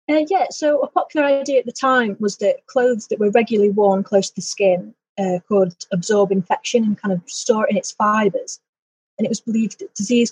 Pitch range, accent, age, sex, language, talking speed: 185-215 Hz, British, 30-49, female, English, 220 wpm